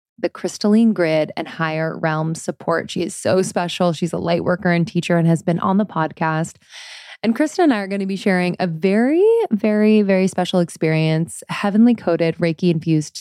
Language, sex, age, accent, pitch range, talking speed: English, female, 20-39, American, 170-200 Hz, 190 wpm